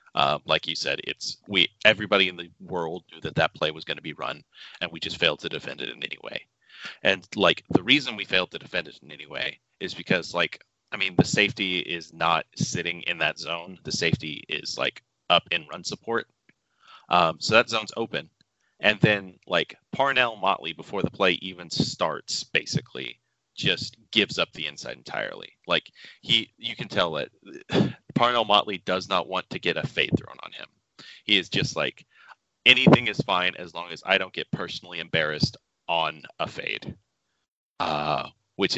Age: 30-49